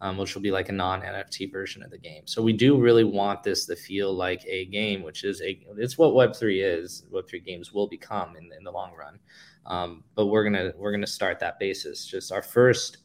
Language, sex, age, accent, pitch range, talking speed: English, male, 20-39, American, 100-115 Hz, 235 wpm